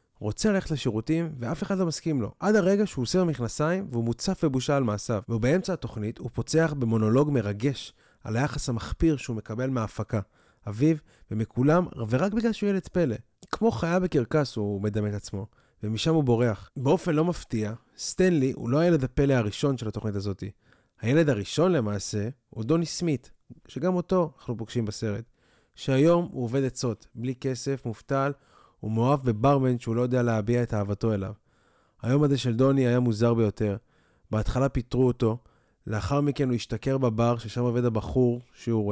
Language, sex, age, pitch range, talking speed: Hebrew, male, 20-39, 115-150 Hz, 165 wpm